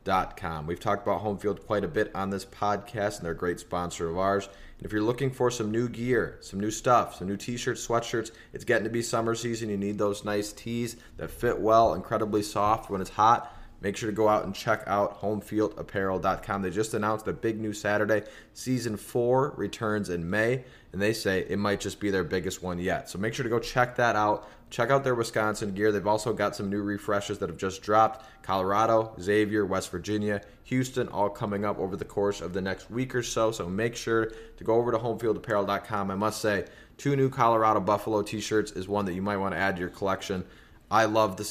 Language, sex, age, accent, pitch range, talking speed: English, male, 20-39, American, 100-115 Hz, 220 wpm